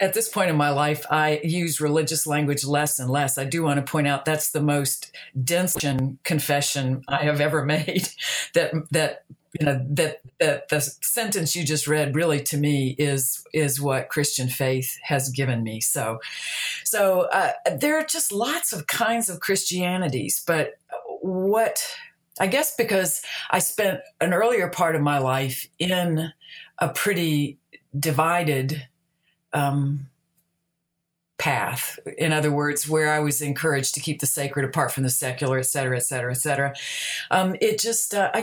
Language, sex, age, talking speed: English, female, 50-69, 160 wpm